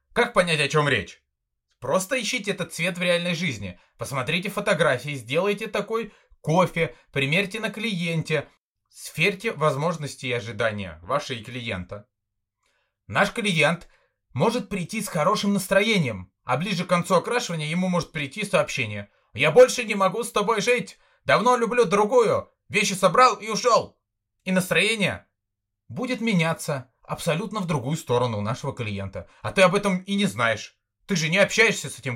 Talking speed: 150 wpm